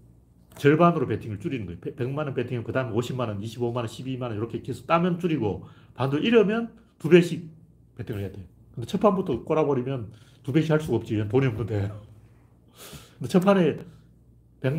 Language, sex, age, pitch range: Korean, male, 40-59, 100-155 Hz